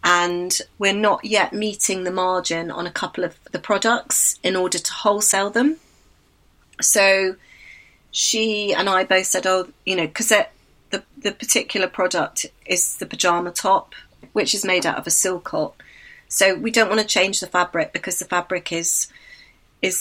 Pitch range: 165-205 Hz